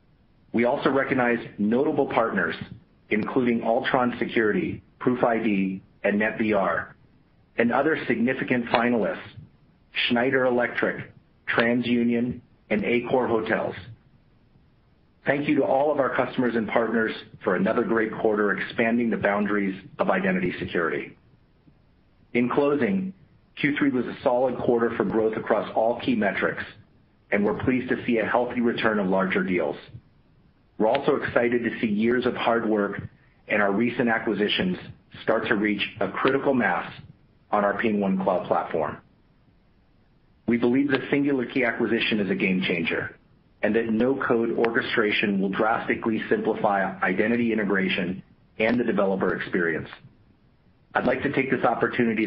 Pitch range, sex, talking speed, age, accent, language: 105-125 Hz, male, 135 wpm, 40-59, American, English